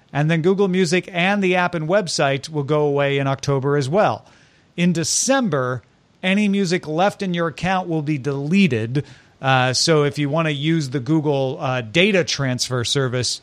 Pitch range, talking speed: 135-180 Hz, 180 wpm